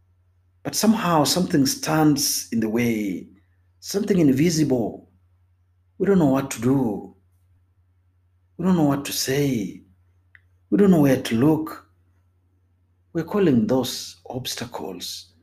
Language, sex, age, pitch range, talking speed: Swahili, male, 50-69, 90-150 Hz, 120 wpm